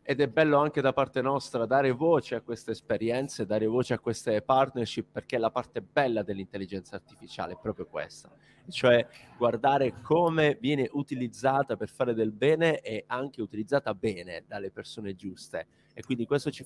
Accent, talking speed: native, 165 wpm